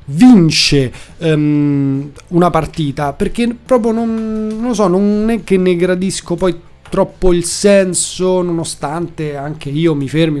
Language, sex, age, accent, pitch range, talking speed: Italian, male, 30-49, native, 155-225 Hz, 135 wpm